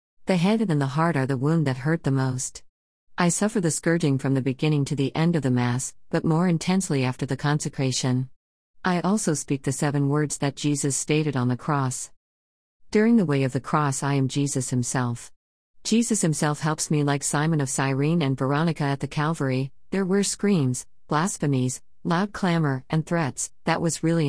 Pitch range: 130-165 Hz